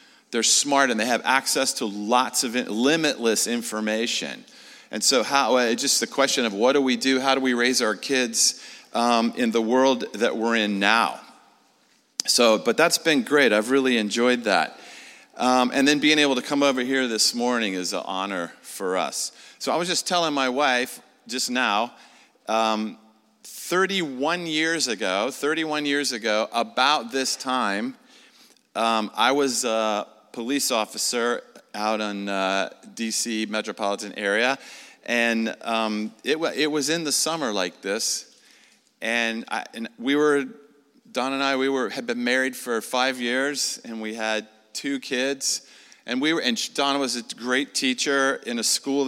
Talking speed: 165 wpm